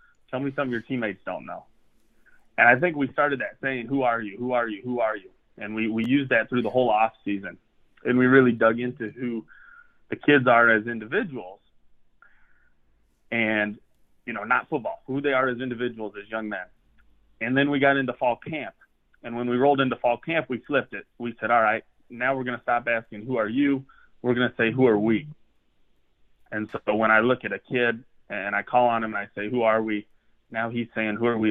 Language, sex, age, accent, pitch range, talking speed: English, male, 30-49, American, 105-125 Hz, 225 wpm